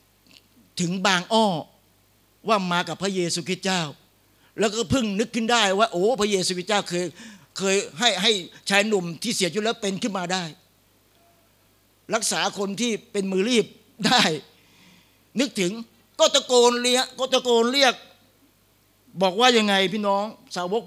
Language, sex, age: Thai, male, 60-79